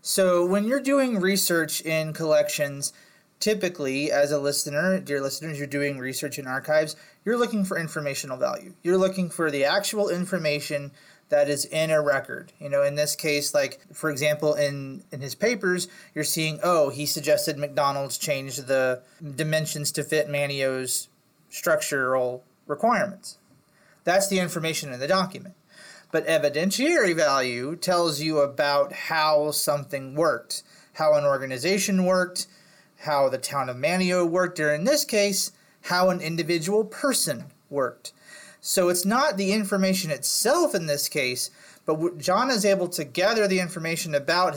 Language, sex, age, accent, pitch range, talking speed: English, male, 30-49, American, 145-190 Hz, 150 wpm